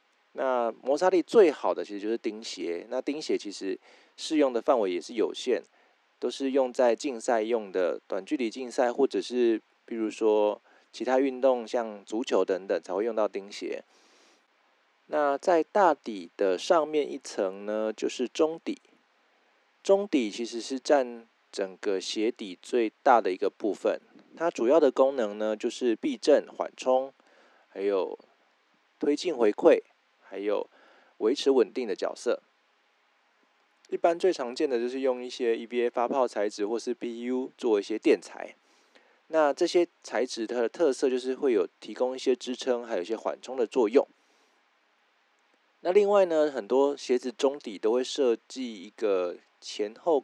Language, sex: Chinese, male